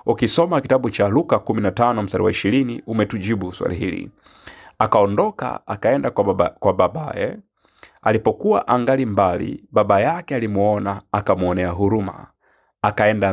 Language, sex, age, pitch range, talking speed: Swahili, male, 30-49, 95-110 Hz, 115 wpm